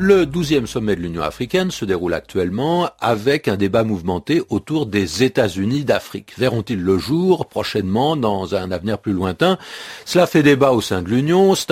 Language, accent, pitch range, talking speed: French, French, 105-170 Hz, 175 wpm